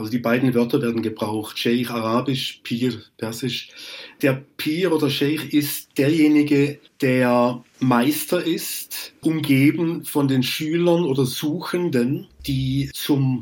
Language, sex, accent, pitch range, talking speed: German, male, German, 120-145 Hz, 120 wpm